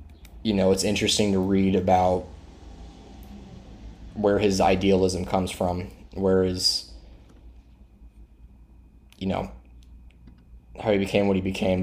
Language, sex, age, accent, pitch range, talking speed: English, male, 20-39, American, 70-95 Hz, 110 wpm